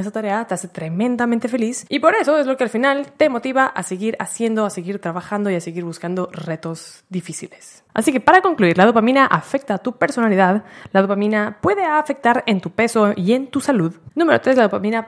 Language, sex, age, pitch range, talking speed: Spanish, female, 20-39, 195-265 Hz, 210 wpm